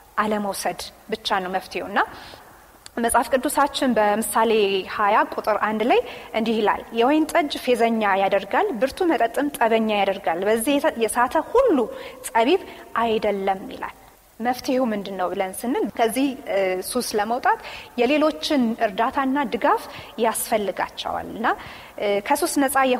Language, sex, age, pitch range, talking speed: Amharic, female, 30-49, 210-270 Hz, 105 wpm